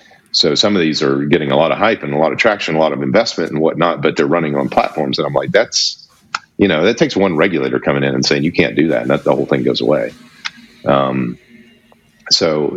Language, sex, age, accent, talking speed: English, male, 40-59, American, 250 wpm